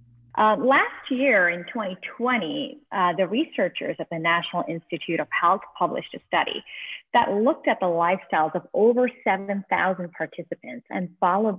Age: 30-49